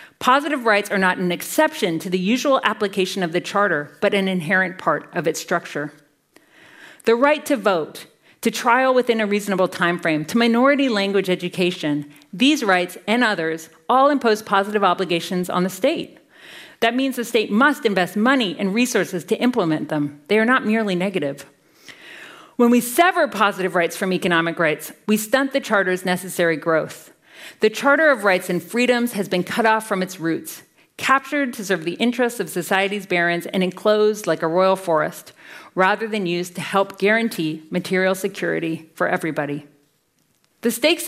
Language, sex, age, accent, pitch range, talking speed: English, female, 40-59, American, 175-230 Hz, 170 wpm